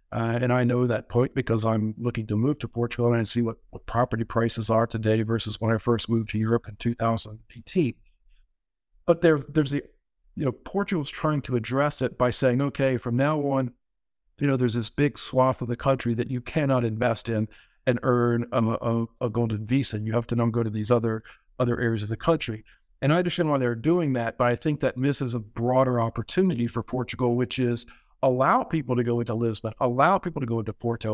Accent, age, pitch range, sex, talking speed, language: American, 50-69, 115-135 Hz, male, 220 wpm, English